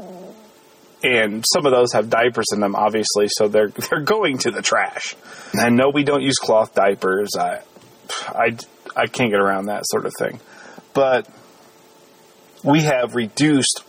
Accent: American